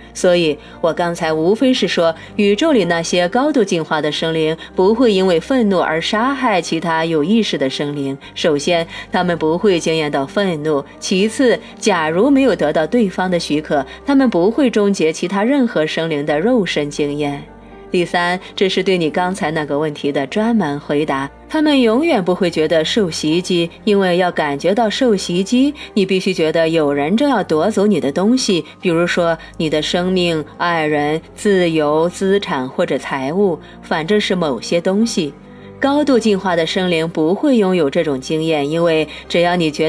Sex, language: female, Chinese